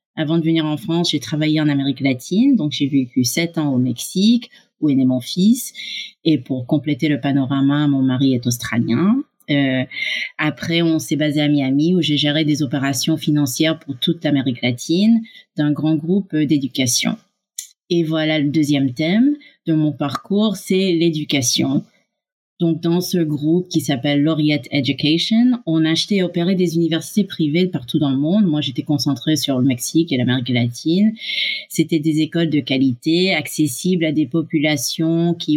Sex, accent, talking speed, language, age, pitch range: female, French, 170 wpm, French, 30-49, 145-175 Hz